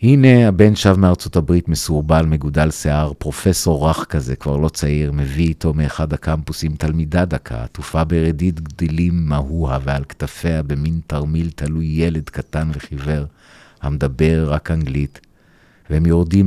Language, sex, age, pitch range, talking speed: Hebrew, male, 50-69, 75-85 Hz, 135 wpm